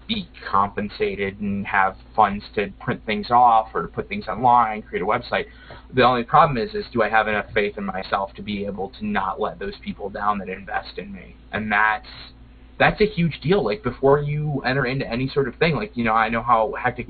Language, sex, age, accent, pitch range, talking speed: English, male, 20-39, American, 105-140 Hz, 225 wpm